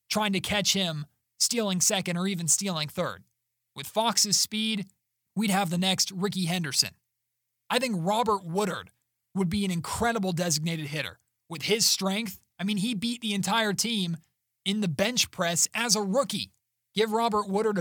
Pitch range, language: 160-205 Hz, English